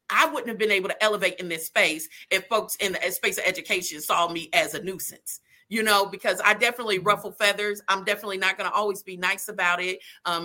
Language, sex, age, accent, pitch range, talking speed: English, female, 30-49, American, 195-240 Hz, 230 wpm